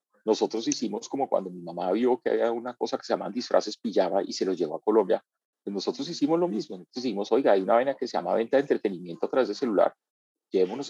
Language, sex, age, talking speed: Spanish, male, 40-59, 235 wpm